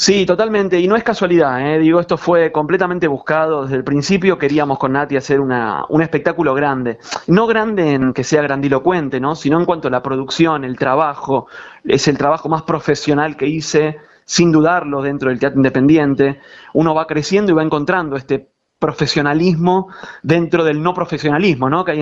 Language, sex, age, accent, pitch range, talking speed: Spanish, male, 20-39, Argentinian, 140-175 Hz, 180 wpm